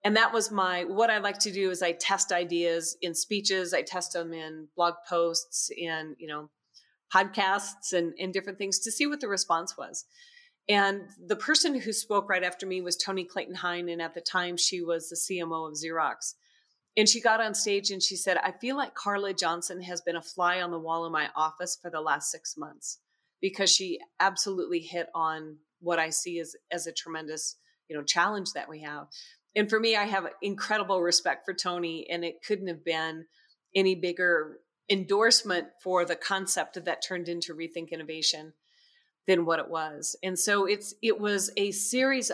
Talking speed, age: 200 wpm, 30-49